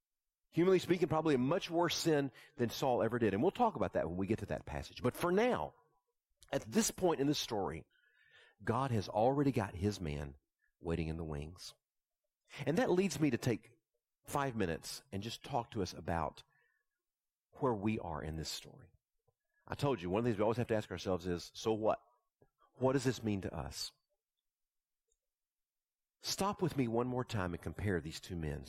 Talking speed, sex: 195 wpm, male